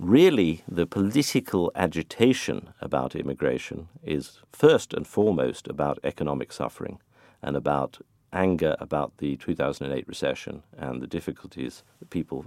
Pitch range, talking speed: 70-95 Hz, 120 wpm